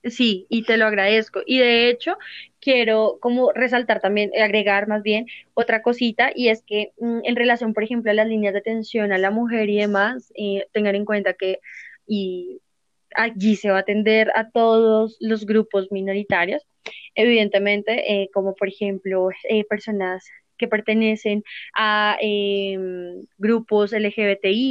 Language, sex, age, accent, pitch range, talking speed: Spanish, female, 20-39, Colombian, 205-240 Hz, 155 wpm